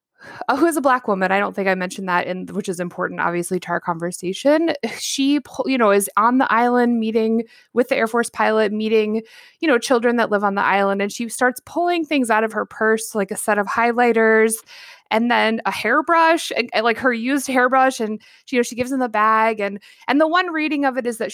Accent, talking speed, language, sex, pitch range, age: American, 230 wpm, English, female, 205-285 Hz, 20-39